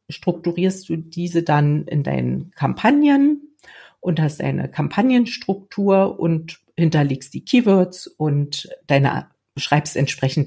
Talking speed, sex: 105 wpm, female